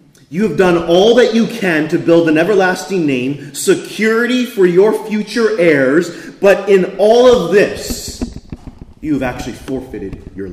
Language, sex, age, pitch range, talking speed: English, male, 30-49, 100-170 Hz, 155 wpm